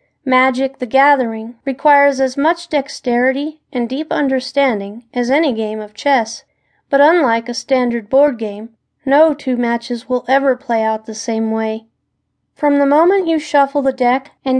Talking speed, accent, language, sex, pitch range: 160 wpm, American, English, female, 235-285 Hz